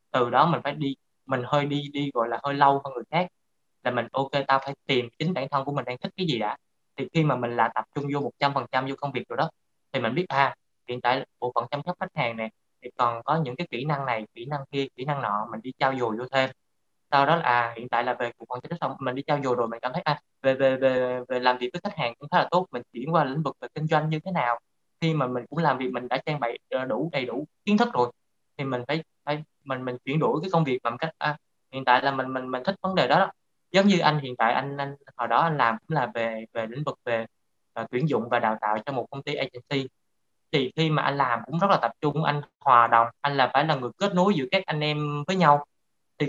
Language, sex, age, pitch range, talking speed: Vietnamese, male, 20-39, 125-155 Hz, 290 wpm